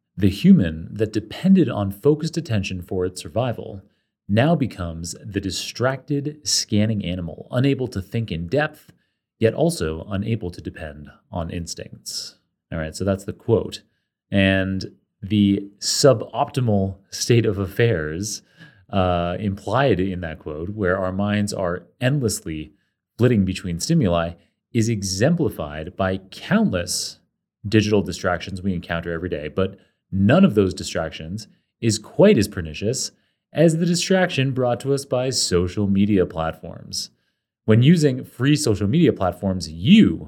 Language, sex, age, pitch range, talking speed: English, male, 30-49, 90-125 Hz, 135 wpm